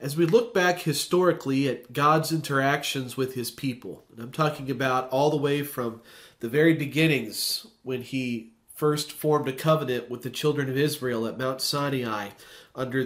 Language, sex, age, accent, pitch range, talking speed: English, male, 40-59, American, 130-155 Hz, 170 wpm